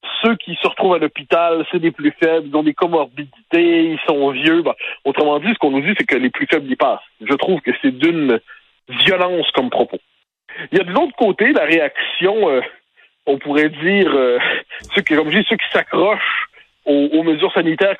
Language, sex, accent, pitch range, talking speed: French, male, French, 155-215 Hz, 210 wpm